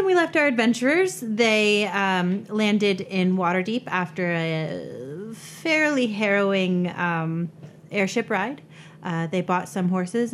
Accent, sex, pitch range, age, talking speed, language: American, female, 165-205 Hz, 30-49, 120 wpm, English